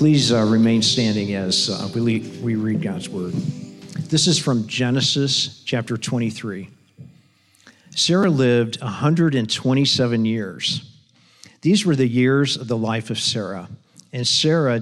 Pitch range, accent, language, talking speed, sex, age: 110-135 Hz, American, English, 130 wpm, male, 50-69